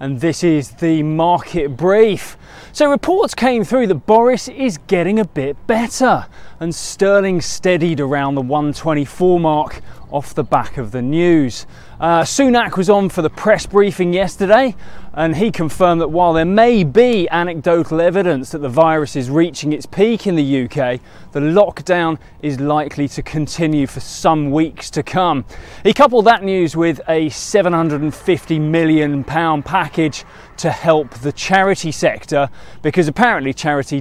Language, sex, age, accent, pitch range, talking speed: English, male, 20-39, British, 145-195 Hz, 155 wpm